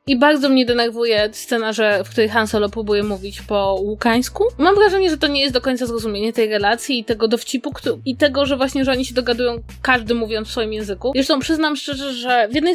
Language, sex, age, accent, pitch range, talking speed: Polish, female, 20-39, native, 225-280 Hz, 220 wpm